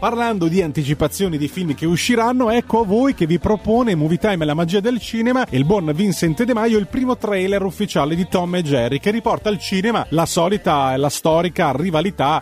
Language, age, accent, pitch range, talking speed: Italian, 30-49, native, 145-205 Hz, 210 wpm